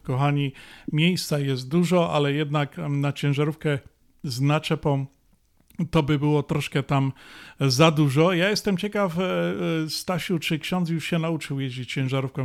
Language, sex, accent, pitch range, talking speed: Polish, male, native, 145-165 Hz, 135 wpm